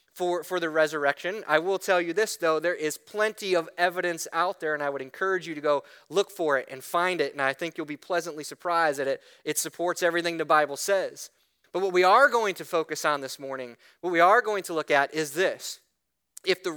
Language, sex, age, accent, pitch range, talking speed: English, male, 30-49, American, 165-220 Hz, 235 wpm